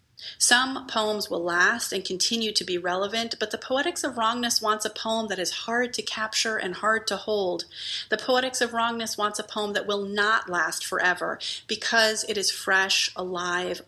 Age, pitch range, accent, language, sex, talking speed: 40-59, 185-225 Hz, American, English, female, 185 wpm